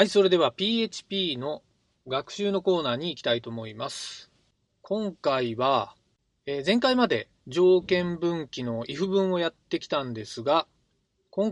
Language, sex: Japanese, male